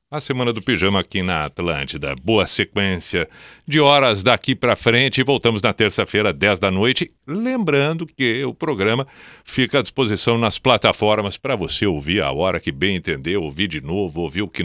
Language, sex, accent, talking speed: Portuguese, male, Brazilian, 175 wpm